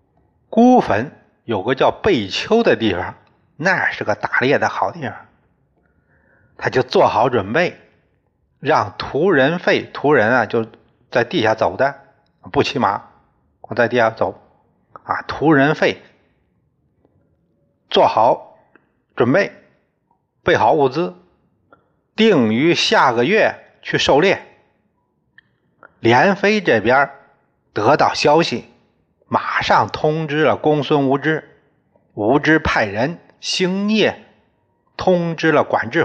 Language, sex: Chinese, male